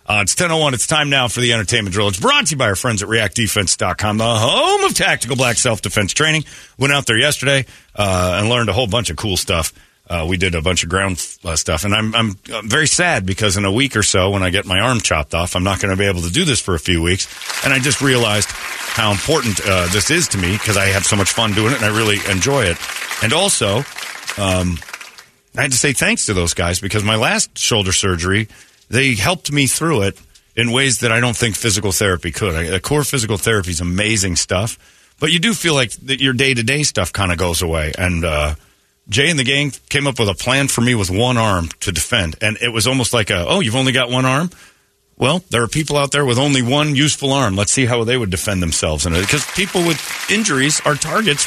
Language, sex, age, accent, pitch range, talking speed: English, male, 40-59, American, 95-140 Hz, 245 wpm